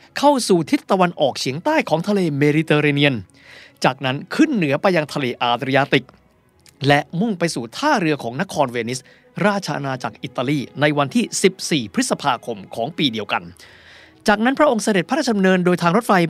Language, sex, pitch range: Thai, male, 140-195 Hz